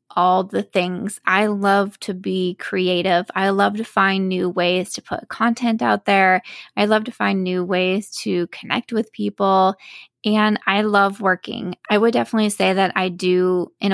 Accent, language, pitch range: American, English, 180-205 Hz